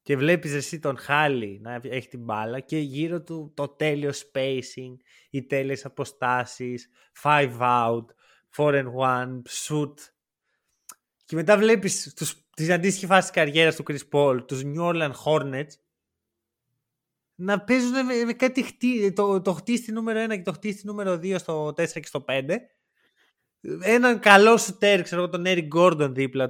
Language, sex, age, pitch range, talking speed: Greek, male, 20-39, 140-215 Hz, 155 wpm